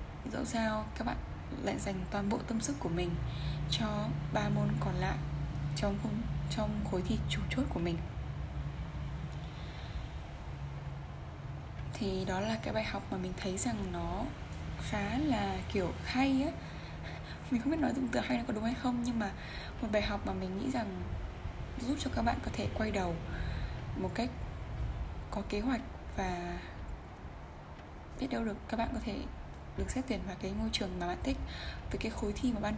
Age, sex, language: 10-29, female, Vietnamese